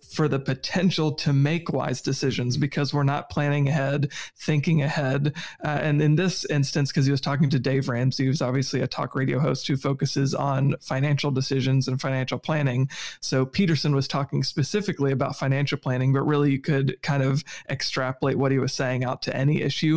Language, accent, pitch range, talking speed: English, American, 135-150 Hz, 190 wpm